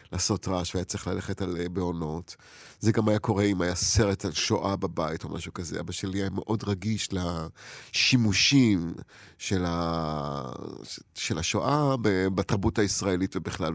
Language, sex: Hebrew, male